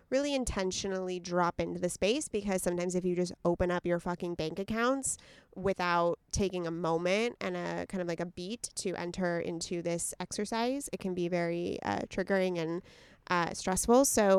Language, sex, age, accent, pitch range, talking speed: English, female, 20-39, American, 175-210 Hz, 180 wpm